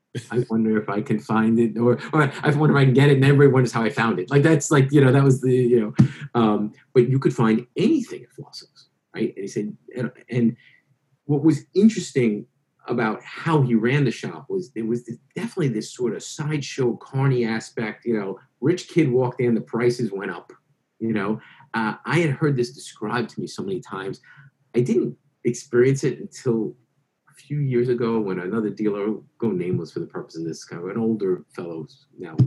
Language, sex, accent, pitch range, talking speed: English, male, American, 115-150 Hz, 205 wpm